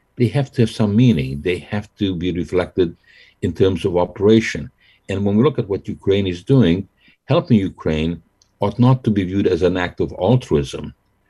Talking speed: 190 wpm